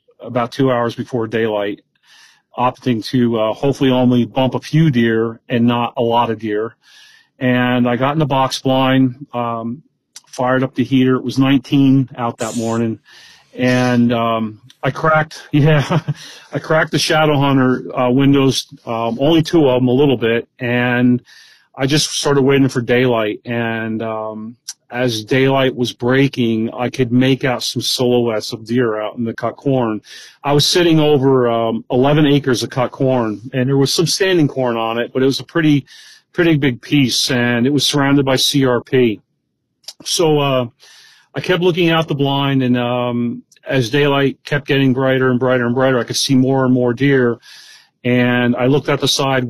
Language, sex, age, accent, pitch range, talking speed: English, male, 40-59, American, 120-140 Hz, 180 wpm